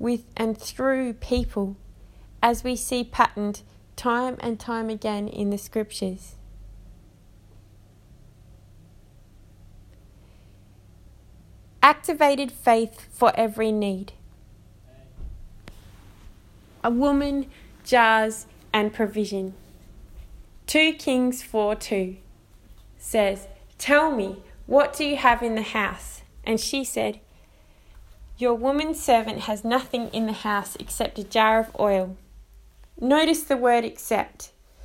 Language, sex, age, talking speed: English, female, 20-39, 100 wpm